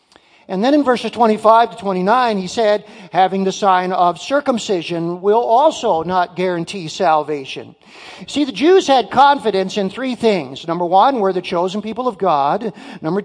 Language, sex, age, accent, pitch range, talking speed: English, male, 50-69, American, 190-260 Hz, 165 wpm